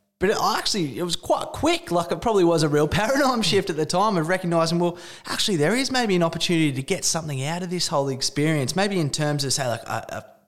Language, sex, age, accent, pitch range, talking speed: English, male, 20-39, Australian, 130-175 Hz, 235 wpm